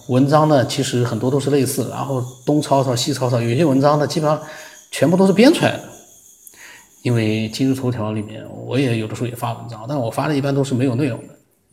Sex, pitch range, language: male, 115-140 Hz, Chinese